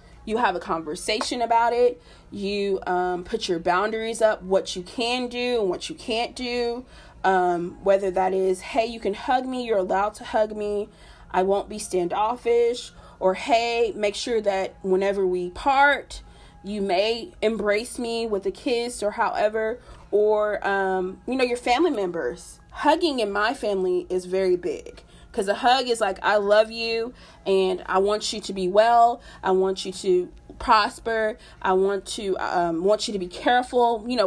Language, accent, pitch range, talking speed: English, American, 190-240 Hz, 175 wpm